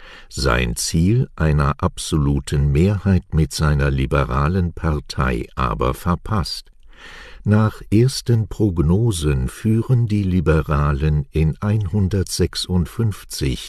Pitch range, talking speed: 70-95 Hz, 85 wpm